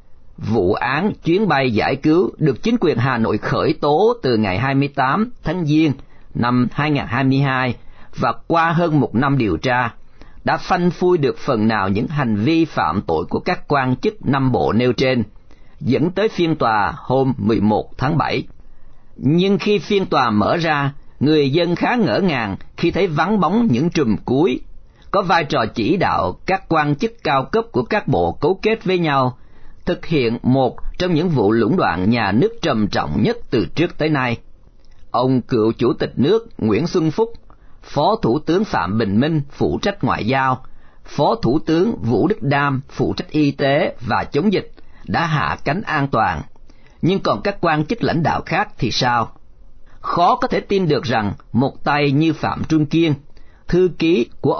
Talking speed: 190 wpm